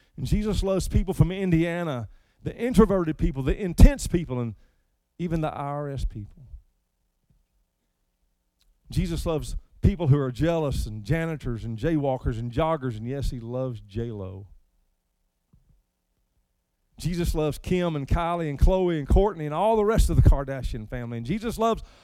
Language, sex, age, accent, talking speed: English, male, 50-69, American, 145 wpm